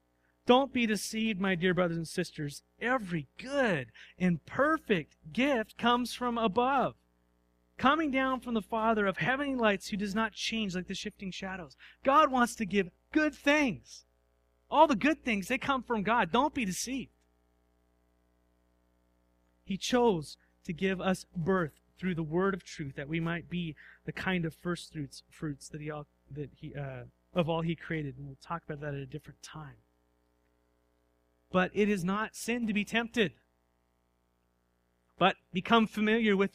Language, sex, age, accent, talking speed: English, male, 30-49, American, 165 wpm